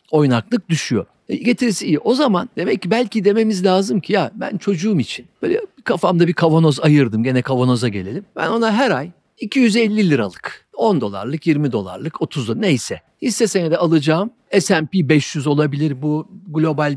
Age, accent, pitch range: 50-69, native, 145-200 Hz